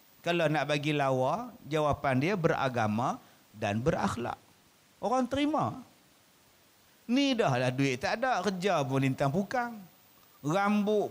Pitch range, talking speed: 140-220 Hz, 115 wpm